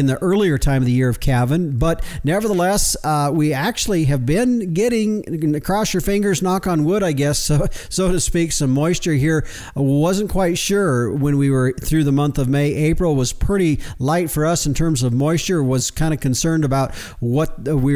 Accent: American